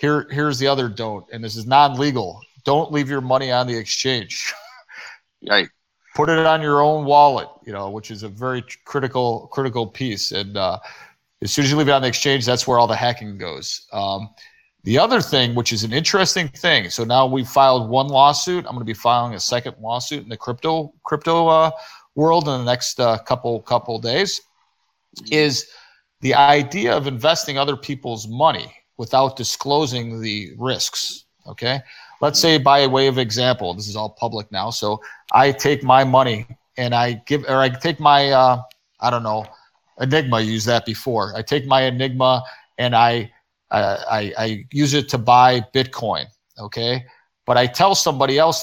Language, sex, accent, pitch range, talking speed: English, male, American, 120-145 Hz, 185 wpm